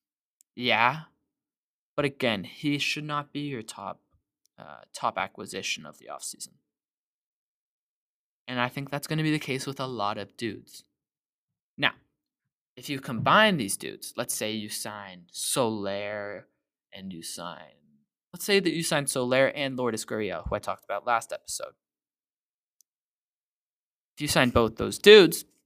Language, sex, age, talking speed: English, male, 20-39, 150 wpm